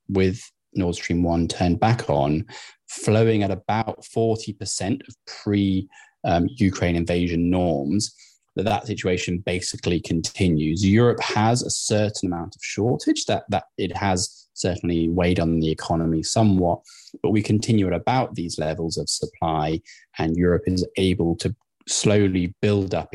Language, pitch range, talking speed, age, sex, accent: English, 85-100 Hz, 145 wpm, 20-39, male, British